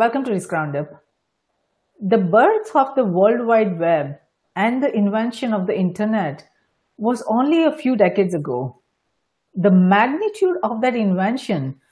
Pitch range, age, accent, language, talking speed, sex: 195-280 Hz, 50-69, Indian, English, 145 wpm, female